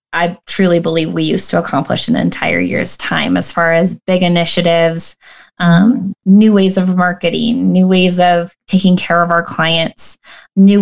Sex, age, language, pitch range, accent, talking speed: female, 20-39, English, 170-205 Hz, American, 165 wpm